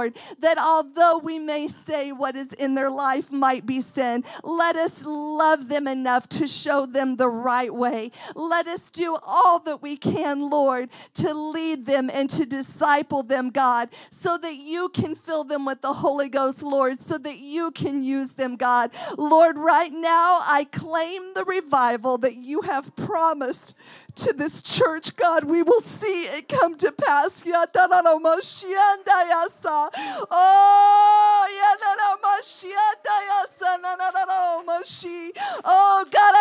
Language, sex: English, female